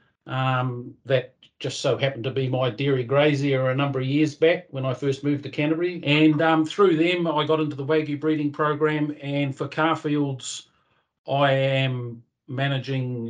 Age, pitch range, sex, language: 40-59, 115-140 Hz, male, English